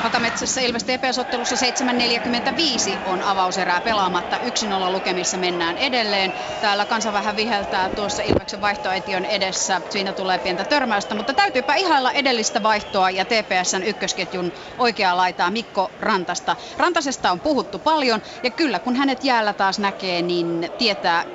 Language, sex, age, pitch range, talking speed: Finnish, female, 30-49, 185-240 Hz, 135 wpm